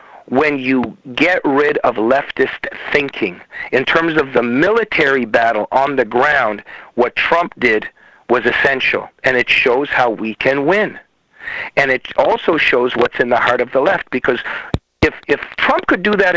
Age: 50-69